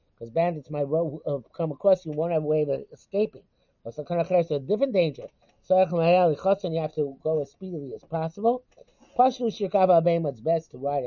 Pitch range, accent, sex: 150-185 Hz, American, male